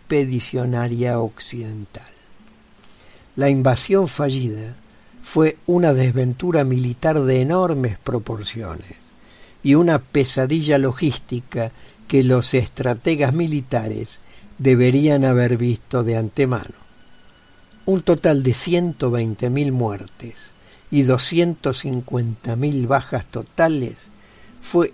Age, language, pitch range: 60-79, English, 120-150 Hz